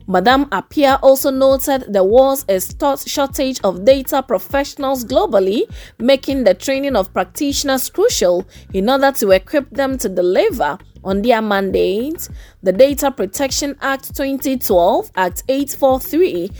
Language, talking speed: English, 130 wpm